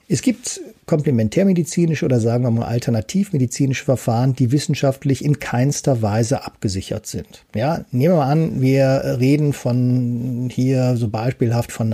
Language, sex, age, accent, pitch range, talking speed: German, male, 50-69, German, 120-150 Hz, 140 wpm